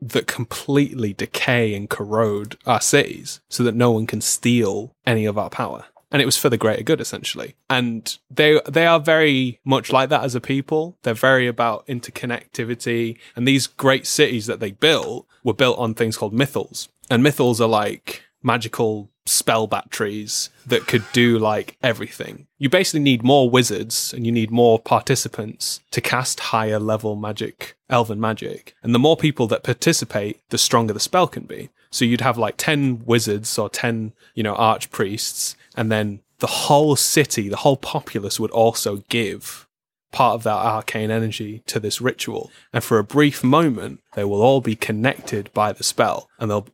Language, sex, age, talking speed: English, male, 10-29, 180 wpm